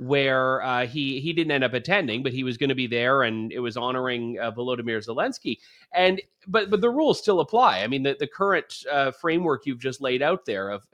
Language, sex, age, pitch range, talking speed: English, male, 30-49, 140-195 Hz, 230 wpm